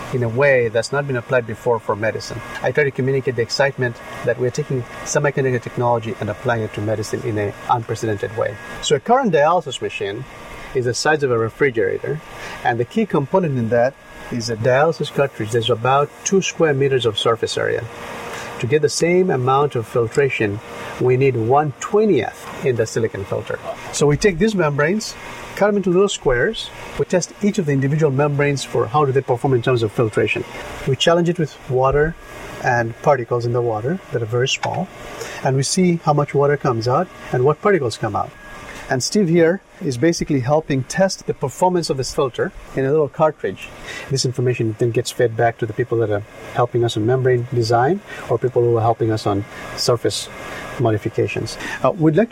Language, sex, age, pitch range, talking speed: English, male, 50-69, 120-165 Hz, 195 wpm